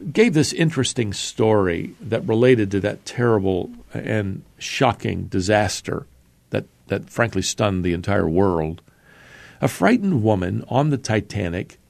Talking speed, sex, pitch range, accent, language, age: 125 wpm, male, 100-130 Hz, American, English, 50-69